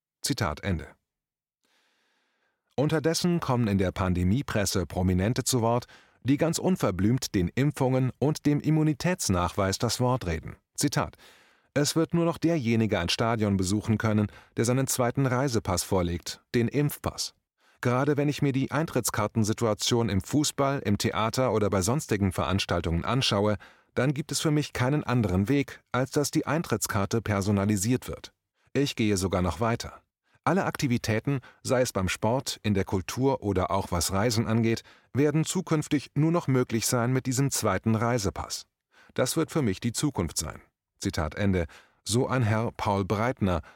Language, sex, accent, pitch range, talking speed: German, male, German, 100-135 Hz, 150 wpm